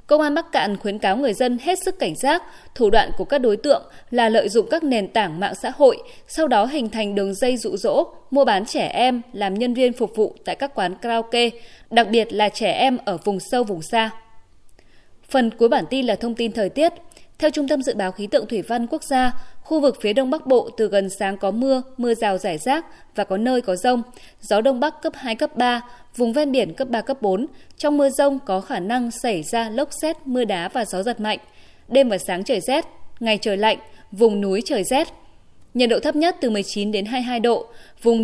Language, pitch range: Vietnamese, 215-275 Hz